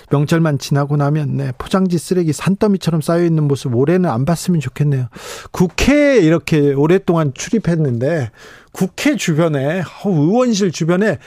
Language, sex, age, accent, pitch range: Korean, male, 40-59, native, 140-180 Hz